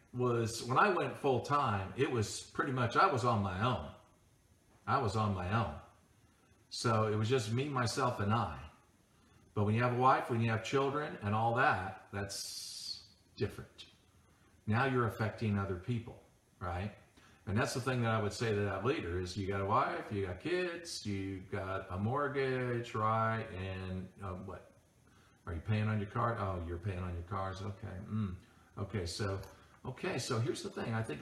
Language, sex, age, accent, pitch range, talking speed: English, male, 50-69, American, 95-115 Hz, 190 wpm